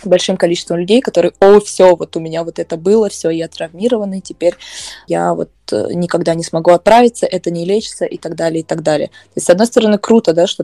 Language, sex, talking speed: Russian, female, 220 wpm